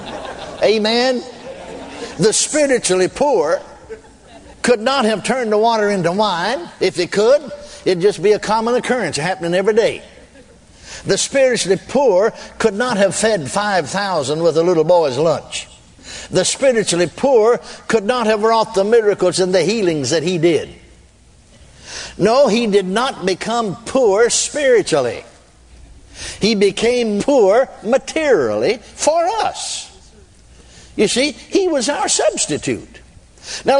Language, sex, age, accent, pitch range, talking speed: English, male, 60-79, American, 180-255 Hz, 130 wpm